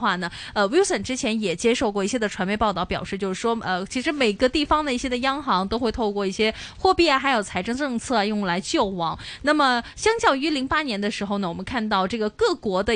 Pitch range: 205-285 Hz